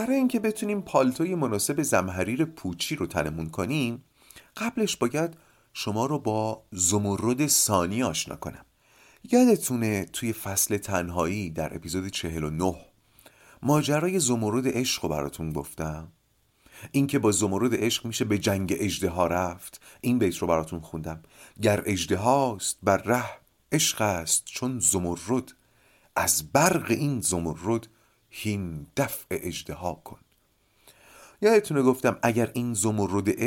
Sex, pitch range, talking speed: male, 90-135 Hz, 120 wpm